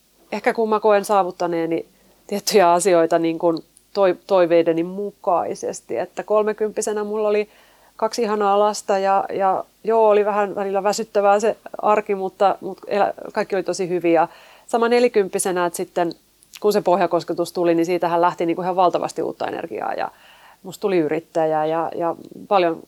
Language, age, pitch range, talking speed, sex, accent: Finnish, 30-49, 175-215 Hz, 145 wpm, female, native